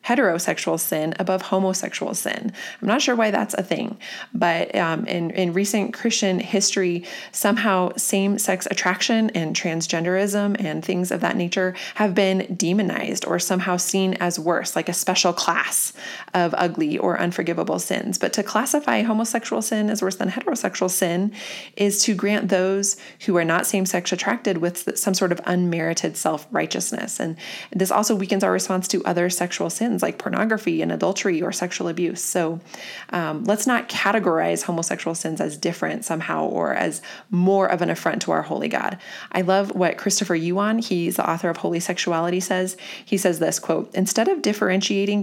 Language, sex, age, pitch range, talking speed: English, female, 20-39, 175-205 Hz, 170 wpm